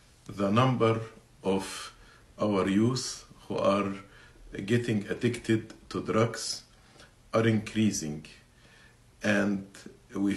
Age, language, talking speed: 50-69, English, 85 wpm